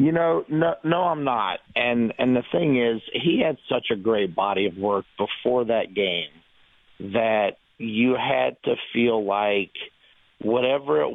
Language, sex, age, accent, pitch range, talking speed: English, male, 50-69, American, 100-120 Hz, 160 wpm